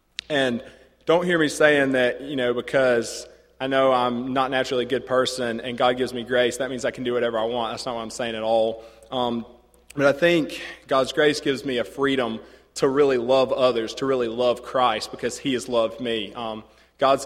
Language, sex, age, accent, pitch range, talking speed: English, male, 20-39, American, 115-130 Hz, 215 wpm